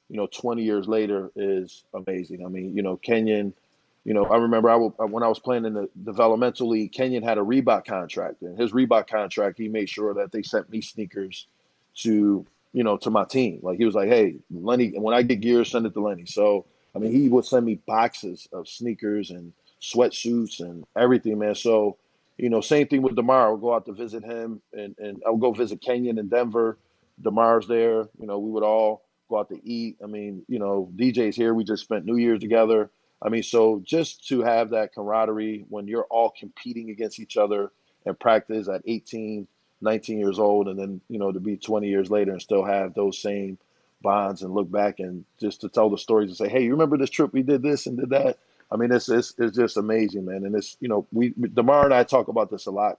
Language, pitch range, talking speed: English, 100-120 Hz, 230 wpm